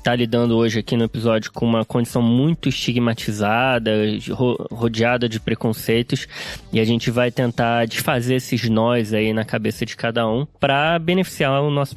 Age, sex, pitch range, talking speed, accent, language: 20-39, male, 120-170 Hz, 160 wpm, Brazilian, Portuguese